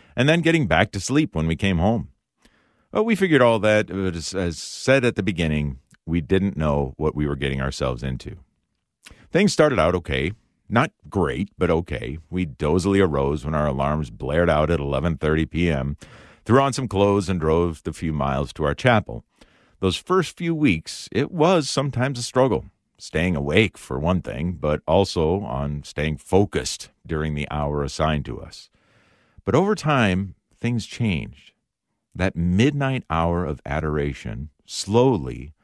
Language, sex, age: English, male, 50-69